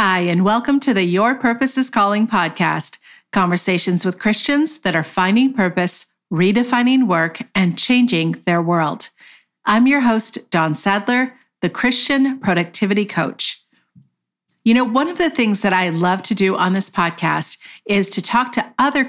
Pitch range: 180-235 Hz